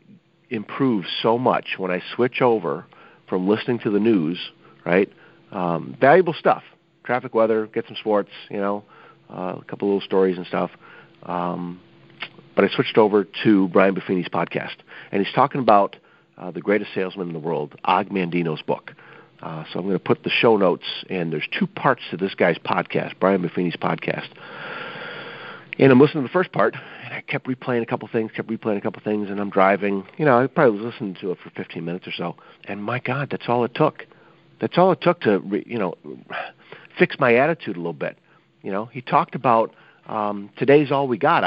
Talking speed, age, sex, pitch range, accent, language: 200 wpm, 40-59, male, 100-140 Hz, American, English